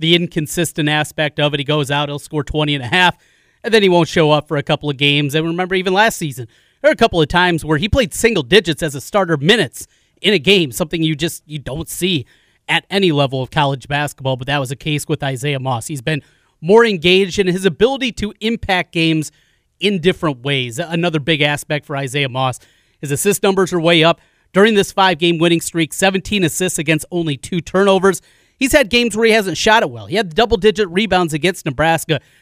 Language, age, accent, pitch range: English, 30-49, American, 150-190 Hz